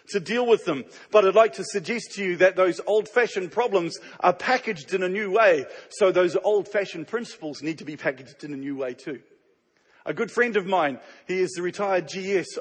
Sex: male